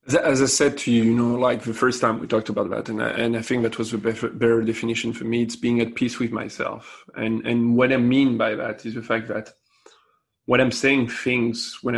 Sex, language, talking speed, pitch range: male, English, 250 wpm, 115-130 Hz